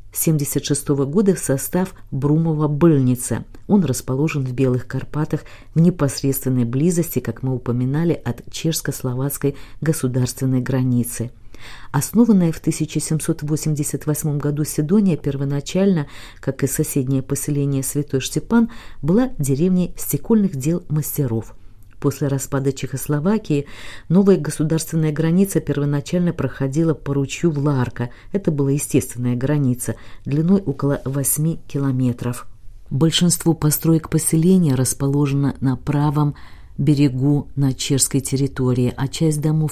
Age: 40-59